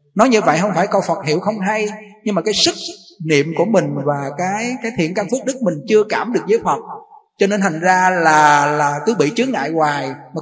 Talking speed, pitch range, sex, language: 240 wpm, 155-215 Hz, male, Vietnamese